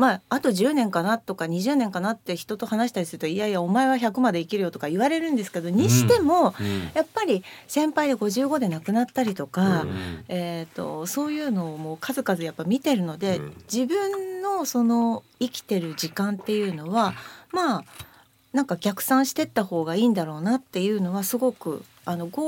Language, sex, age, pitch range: Japanese, female, 40-59, 170-245 Hz